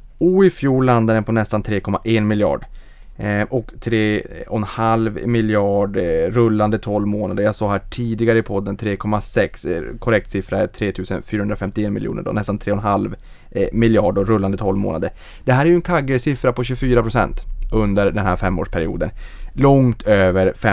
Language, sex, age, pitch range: Swedish, male, 20-39, 100-115 Hz